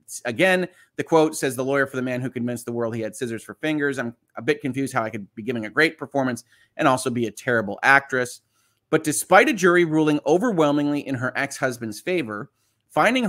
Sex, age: male, 30-49